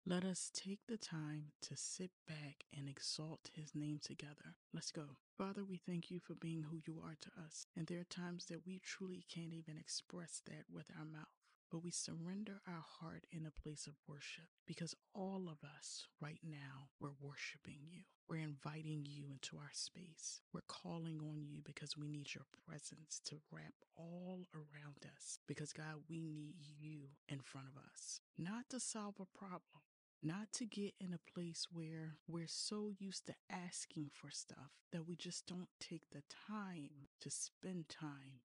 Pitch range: 145-175 Hz